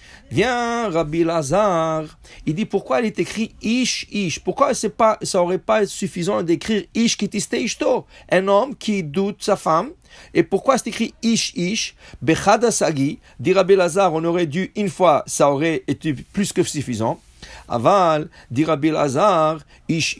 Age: 50-69